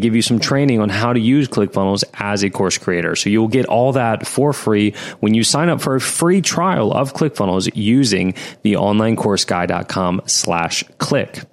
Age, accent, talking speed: 30-49, American, 170 wpm